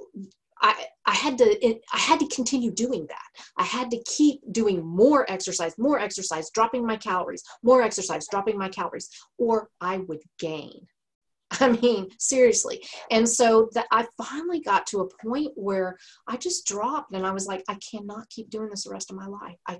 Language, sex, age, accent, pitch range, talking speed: English, female, 30-49, American, 185-245 Hz, 190 wpm